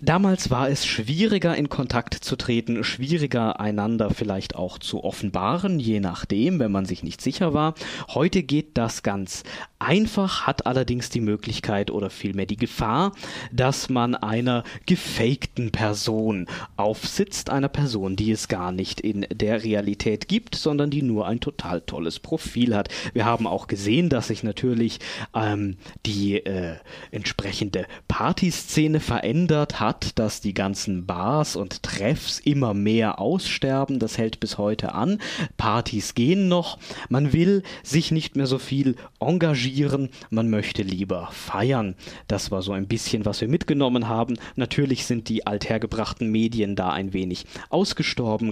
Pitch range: 100-145 Hz